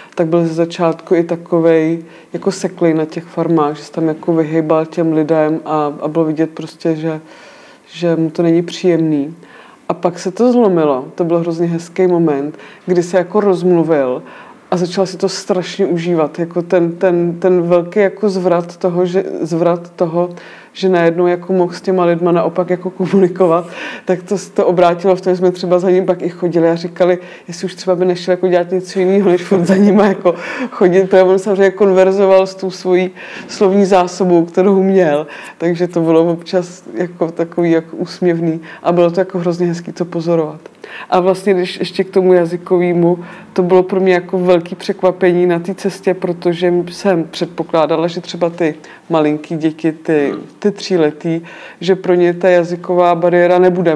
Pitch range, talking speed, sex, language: 165-185 Hz, 180 wpm, female, Czech